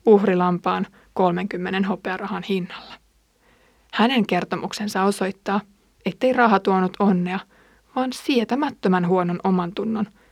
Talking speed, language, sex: 95 wpm, Finnish, female